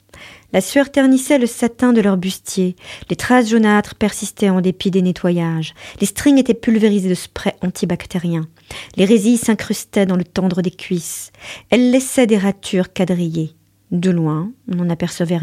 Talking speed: 160 wpm